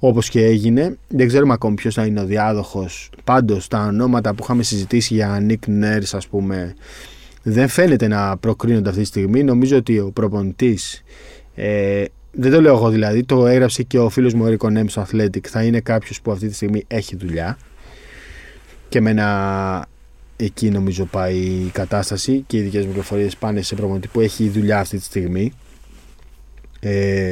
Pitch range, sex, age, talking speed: 100-120 Hz, male, 20-39, 175 wpm